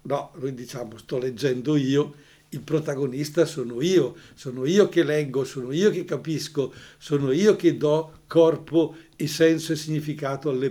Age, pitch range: 60-79, 135-160 Hz